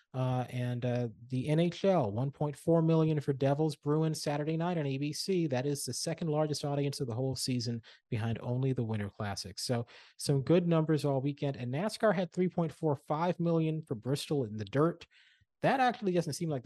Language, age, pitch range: English, 30-49, 115-155 Hz